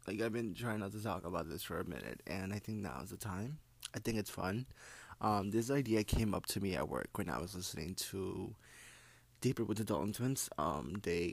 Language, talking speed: English, 230 wpm